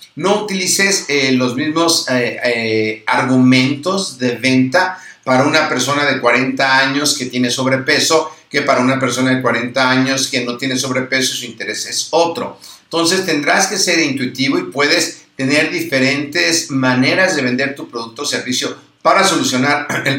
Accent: Mexican